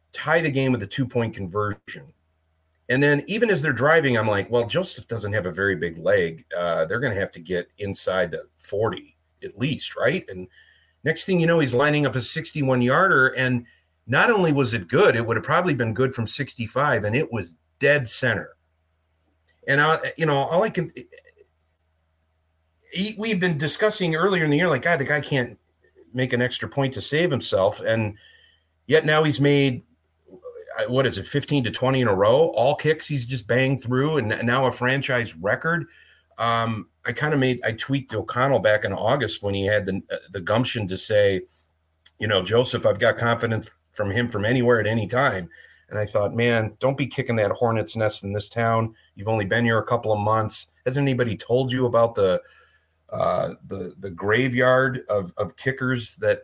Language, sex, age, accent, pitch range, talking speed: English, male, 40-59, American, 105-140 Hz, 195 wpm